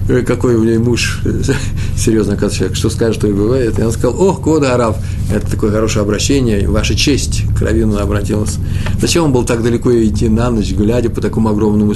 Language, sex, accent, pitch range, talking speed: Russian, male, native, 100-120 Hz, 180 wpm